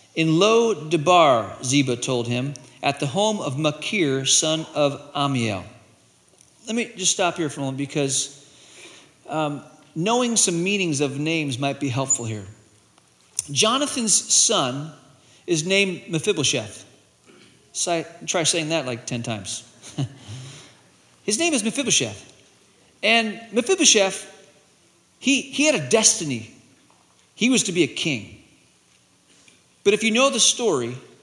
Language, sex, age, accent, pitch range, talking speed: English, male, 40-59, American, 135-210 Hz, 130 wpm